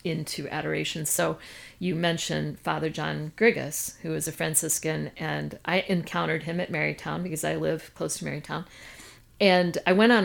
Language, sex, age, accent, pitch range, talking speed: English, female, 40-59, American, 160-210 Hz, 165 wpm